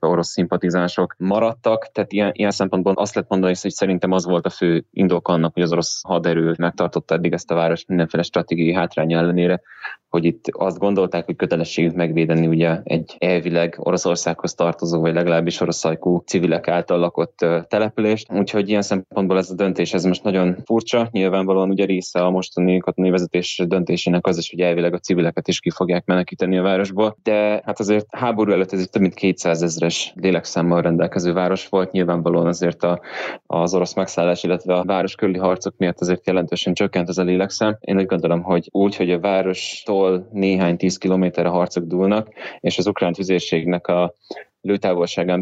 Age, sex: 20-39, male